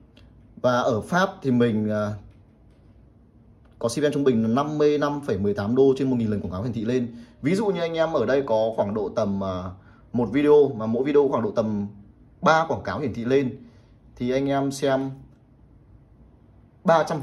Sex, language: male, Vietnamese